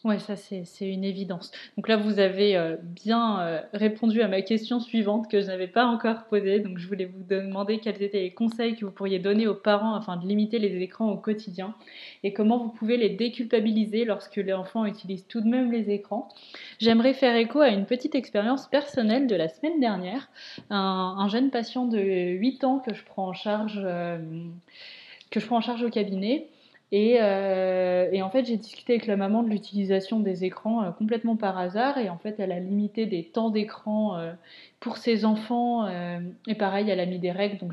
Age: 20-39